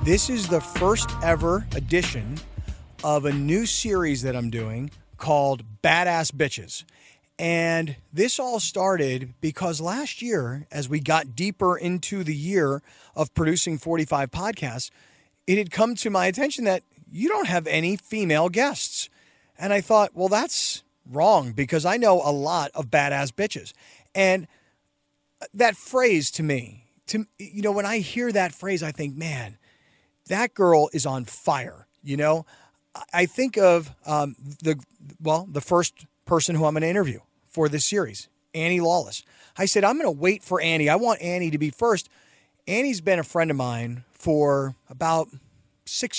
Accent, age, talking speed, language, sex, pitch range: American, 40-59, 165 wpm, English, male, 145-185 Hz